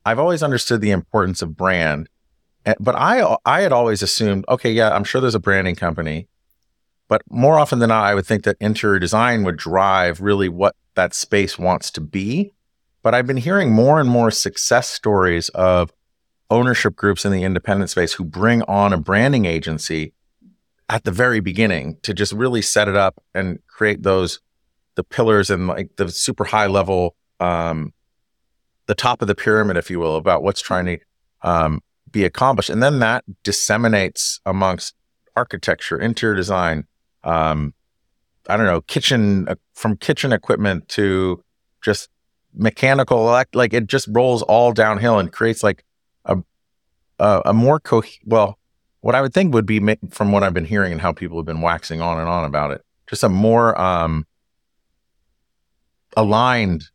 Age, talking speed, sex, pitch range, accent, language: 30-49, 170 wpm, male, 85-115 Hz, American, English